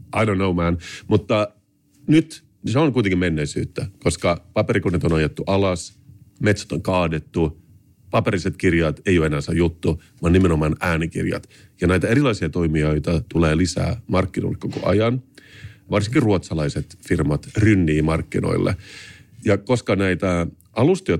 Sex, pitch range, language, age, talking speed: male, 85-110 Hz, Finnish, 40-59, 130 wpm